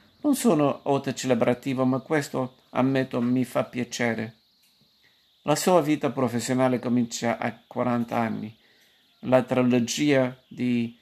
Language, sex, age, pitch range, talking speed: Italian, male, 50-69, 120-130 Hz, 115 wpm